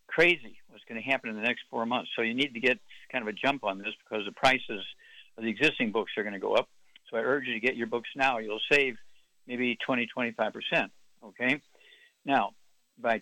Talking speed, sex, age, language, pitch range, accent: 225 wpm, male, 60-79, English, 115-140 Hz, American